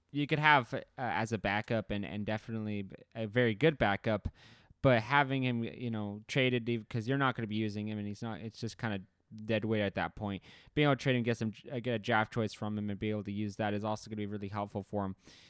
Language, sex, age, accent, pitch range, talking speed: English, male, 20-39, American, 105-125 Hz, 265 wpm